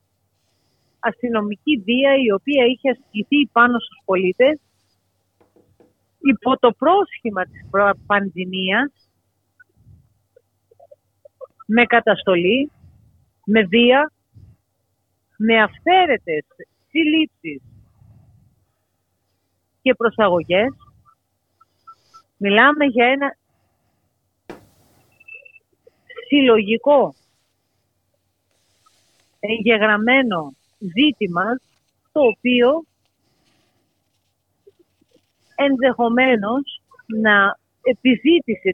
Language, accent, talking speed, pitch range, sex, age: Greek, native, 55 wpm, 185-265 Hz, female, 40-59